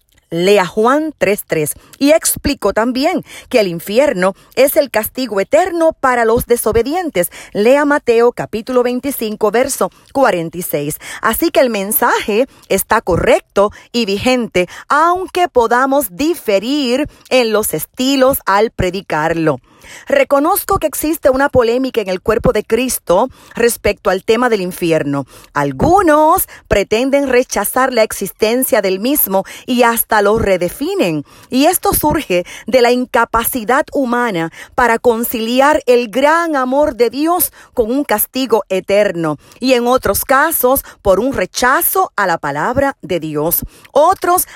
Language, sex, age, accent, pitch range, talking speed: Spanish, female, 40-59, American, 200-275 Hz, 130 wpm